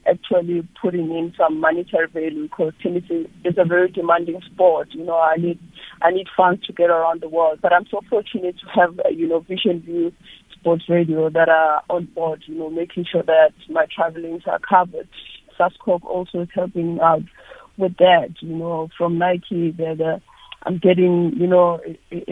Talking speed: 185 wpm